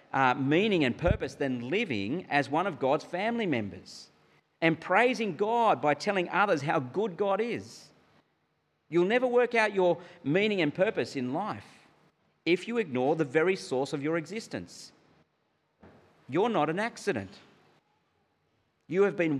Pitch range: 135-180 Hz